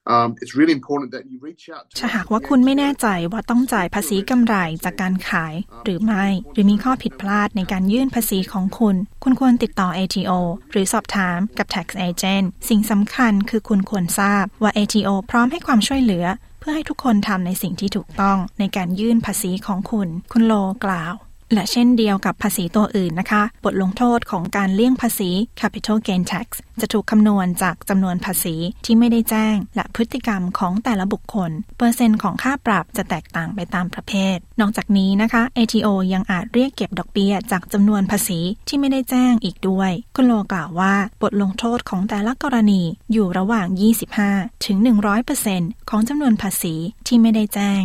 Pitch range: 190-230 Hz